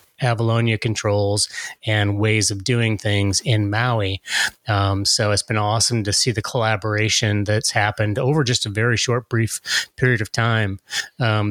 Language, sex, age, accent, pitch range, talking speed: English, male, 30-49, American, 105-125 Hz, 155 wpm